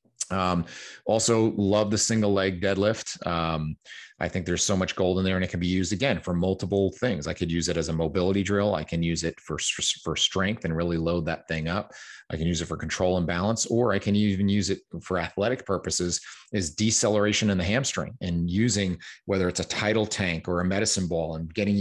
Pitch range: 85-100 Hz